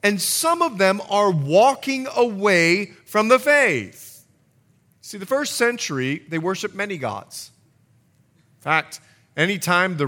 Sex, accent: male, American